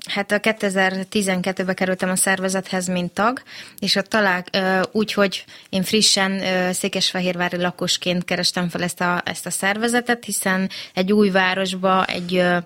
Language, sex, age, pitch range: Hungarian, female, 20-39, 185-205 Hz